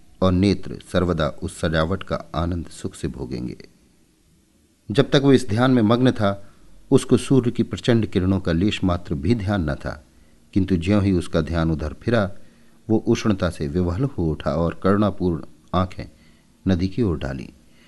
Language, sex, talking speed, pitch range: Hindi, male, 170 wpm, 80-105 Hz